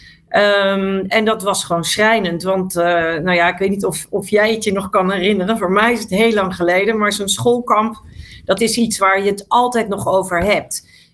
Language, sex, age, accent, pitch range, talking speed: Dutch, female, 40-59, Dutch, 185-225 Hz, 220 wpm